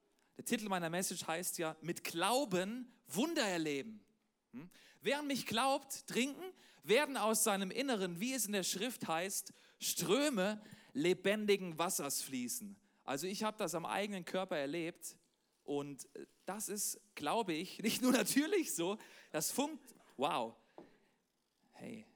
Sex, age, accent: male, 40-59, German